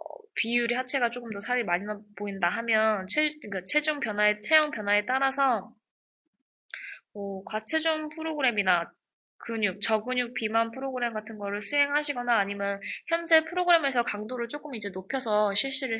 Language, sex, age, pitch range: Korean, female, 20-39, 210-285 Hz